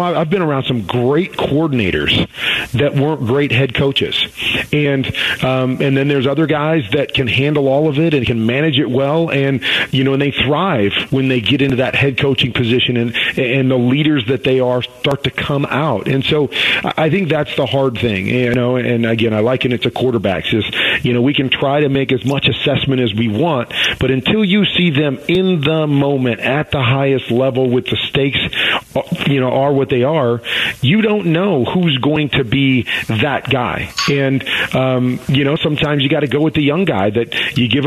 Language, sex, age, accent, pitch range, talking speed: English, male, 40-59, American, 125-145 Hz, 210 wpm